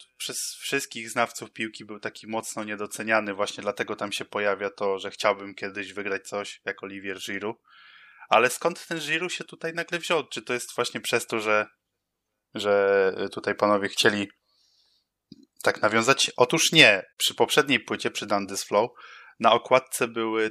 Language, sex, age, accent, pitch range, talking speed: Polish, male, 20-39, native, 100-115 Hz, 160 wpm